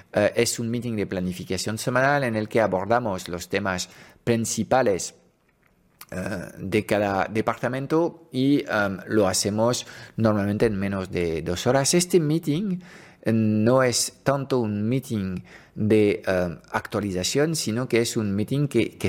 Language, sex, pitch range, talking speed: Spanish, male, 100-130 Hz, 130 wpm